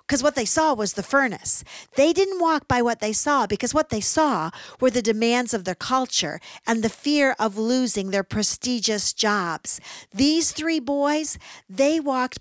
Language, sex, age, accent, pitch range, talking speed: English, female, 50-69, American, 205-285 Hz, 180 wpm